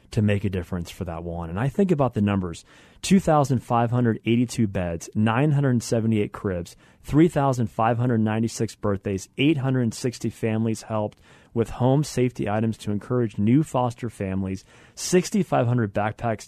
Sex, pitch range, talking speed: male, 110-135 Hz, 120 wpm